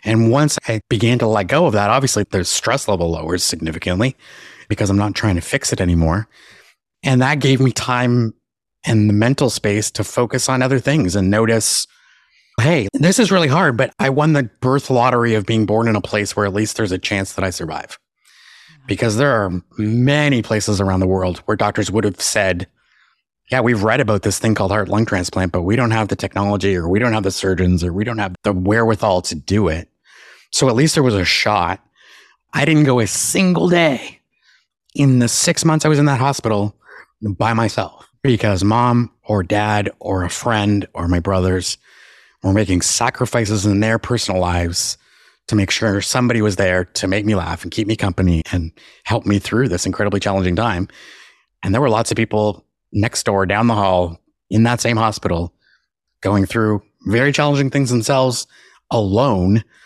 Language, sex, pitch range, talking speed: English, male, 95-120 Hz, 195 wpm